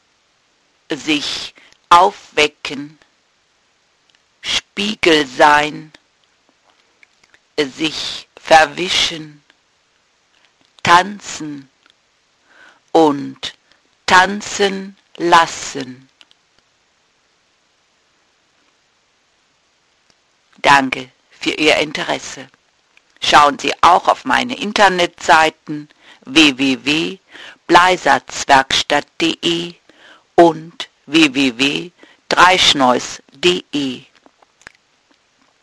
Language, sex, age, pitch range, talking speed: English, female, 60-79, 145-190 Hz, 40 wpm